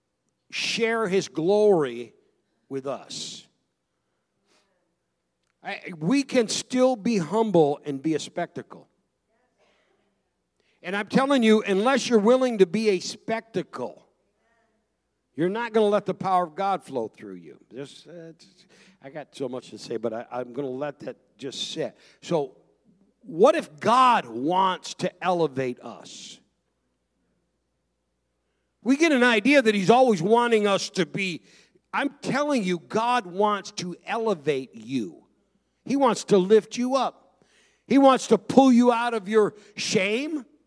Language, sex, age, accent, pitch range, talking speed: English, male, 50-69, American, 155-230 Hz, 140 wpm